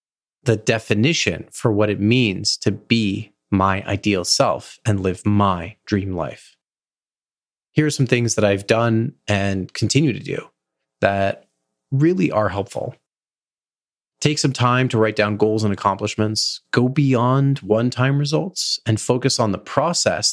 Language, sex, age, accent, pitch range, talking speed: English, male, 30-49, American, 105-130 Hz, 145 wpm